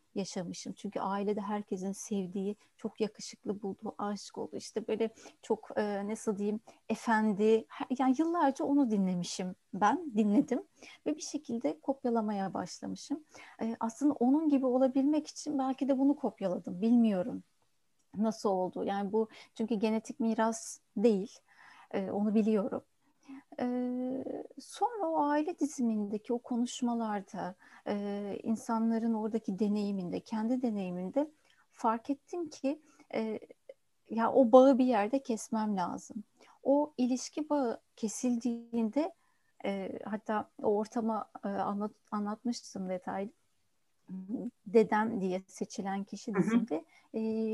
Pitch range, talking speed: 210-265 Hz, 115 wpm